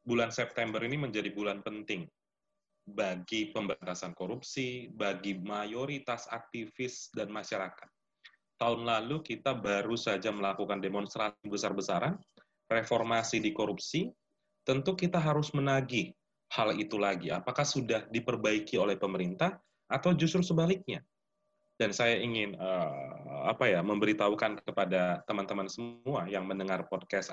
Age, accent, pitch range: 30-49, native, 105-135 Hz